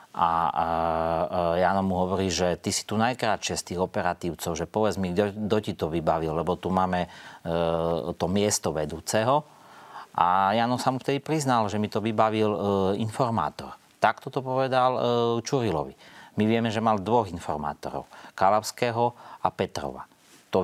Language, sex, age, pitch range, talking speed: Slovak, male, 40-59, 85-105 Hz, 160 wpm